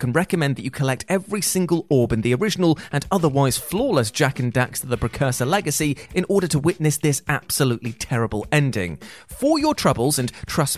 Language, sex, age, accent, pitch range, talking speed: English, male, 30-49, British, 125-180 Hz, 190 wpm